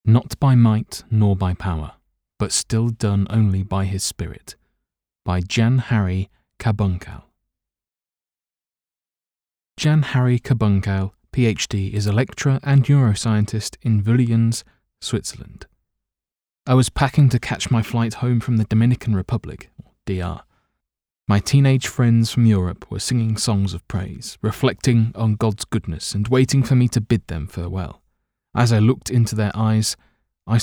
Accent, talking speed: British, 135 wpm